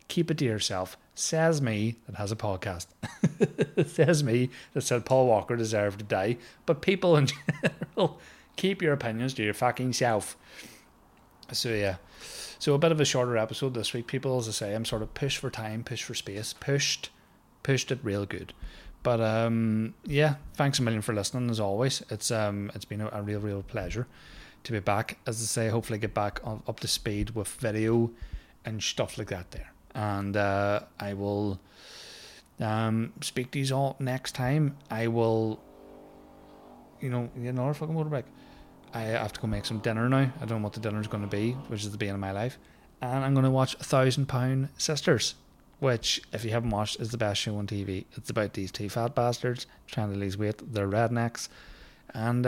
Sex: male